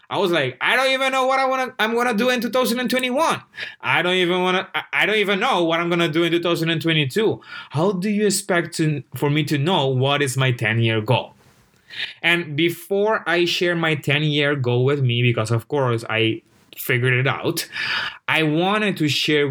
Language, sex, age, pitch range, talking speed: English, male, 20-39, 130-185 Hz, 205 wpm